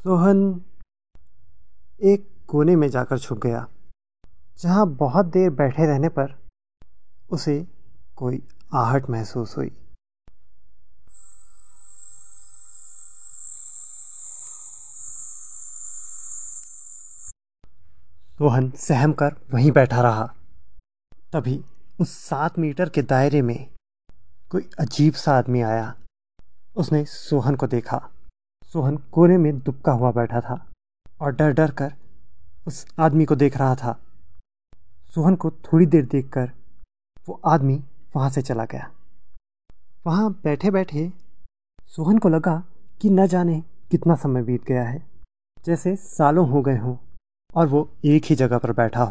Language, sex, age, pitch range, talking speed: Hindi, male, 30-49, 110-160 Hz, 115 wpm